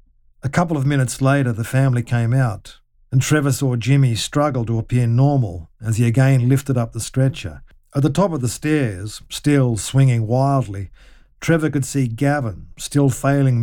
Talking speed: 170 wpm